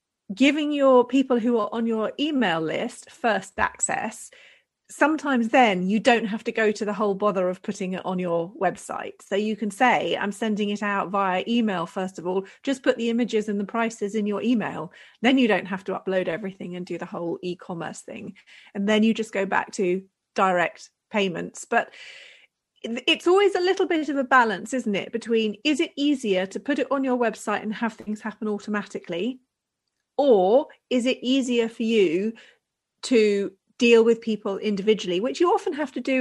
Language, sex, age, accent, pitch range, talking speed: English, female, 30-49, British, 195-250 Hz, 190 wpm